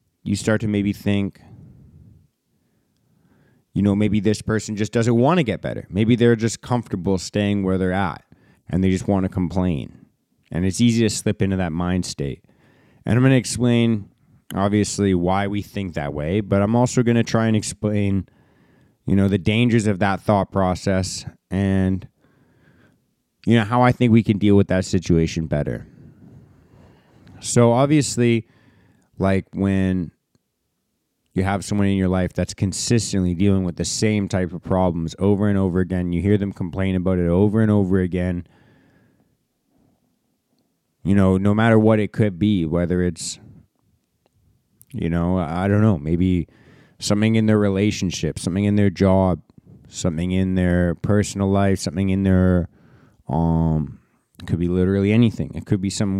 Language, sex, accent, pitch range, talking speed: English, male, American, 95-110 Hz, 165 wpm